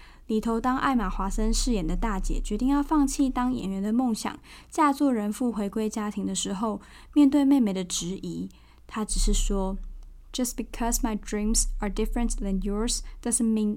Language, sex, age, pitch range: Chinese, female, 10-29, 200-245 Hz